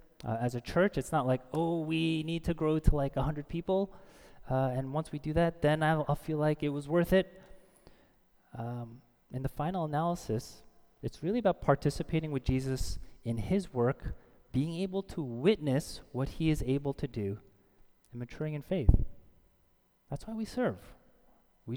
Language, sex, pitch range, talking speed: English, male, 120-155 Hz, 175 wpm